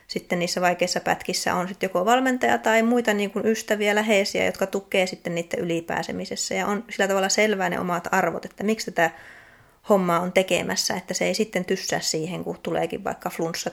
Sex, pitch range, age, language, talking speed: female, 170-205 Hz, 20-39, Finnish, 185 wpm